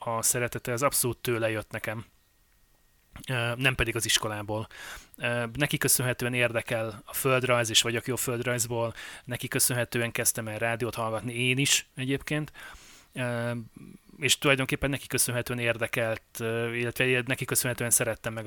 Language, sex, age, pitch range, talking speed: Hungarian, male, 30-49, 110-130 Hz, 125 wpm